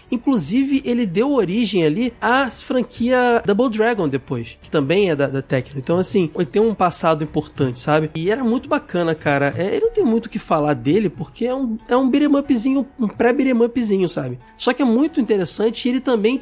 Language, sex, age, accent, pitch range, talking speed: Portuguese, male, 20-39, Brazilian, 150-230 Hz, 210 wpm